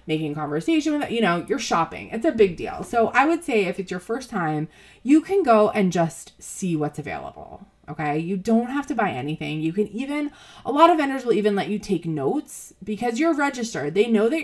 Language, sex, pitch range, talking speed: English, female, 160-230 Hz, 225 wpm